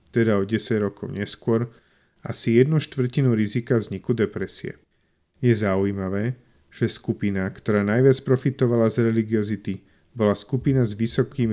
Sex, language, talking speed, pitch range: male, Slovak, 125 wpm, 100-125 Hz